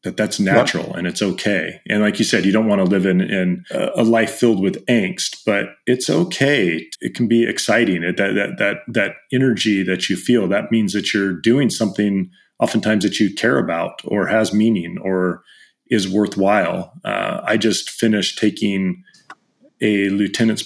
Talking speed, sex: 180 wpm, male